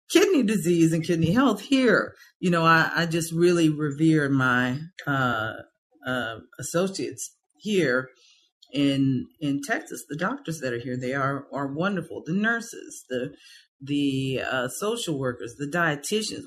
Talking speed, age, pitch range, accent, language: 140 wpm, 40-59, 130-190 Hz, American, English